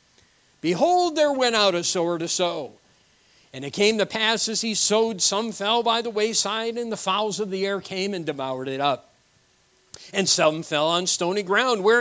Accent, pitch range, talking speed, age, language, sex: American, 155-225 Hz, 195 wpm, 50-69, English, male